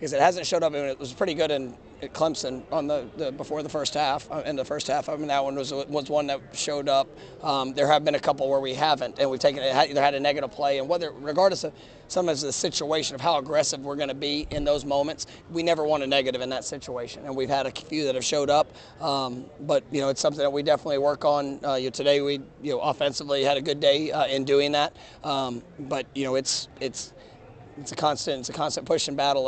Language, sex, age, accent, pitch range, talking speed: English, male, 30-49, American, 135-150 Hz, 265 wpm